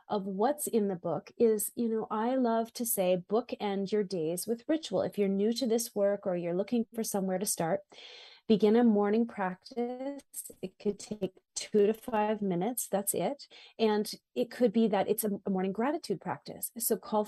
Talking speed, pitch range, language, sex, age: 190 wpm, 185-240 Hz, English, female, 30-49